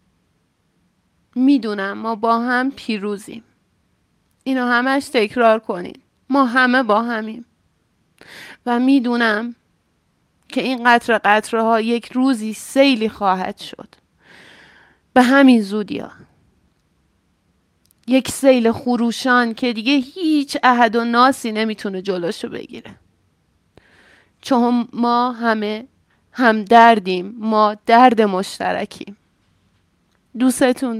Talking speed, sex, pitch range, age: 95 wpm, female, 220-255 Hz, 30-49